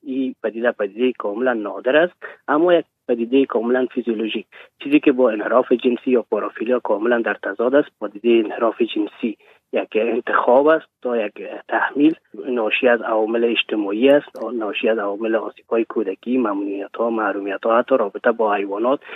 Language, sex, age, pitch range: English, male, 30-49, 115-160 Hz